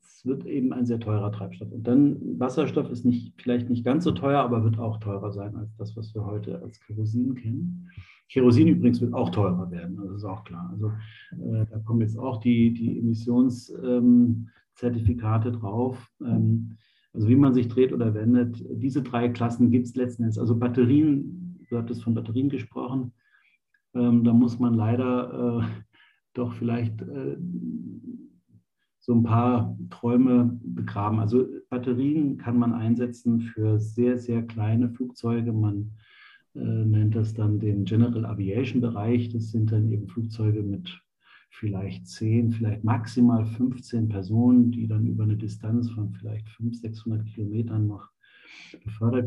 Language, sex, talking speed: German, male, 155 wpm